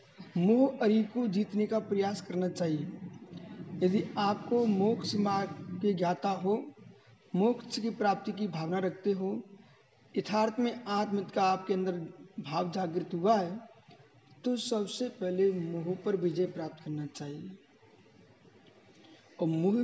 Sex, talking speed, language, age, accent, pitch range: male, 120 wpm, Hindi, 50-69, native, 180-220 Hz